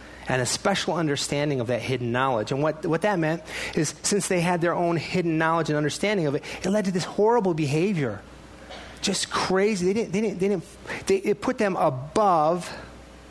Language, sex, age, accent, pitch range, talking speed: English, male, 30-49, American, 130-165 Hz, 200 wpm